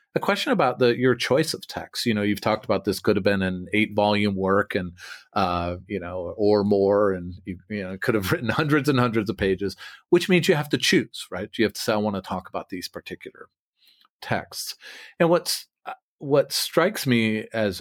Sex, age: male, 40-59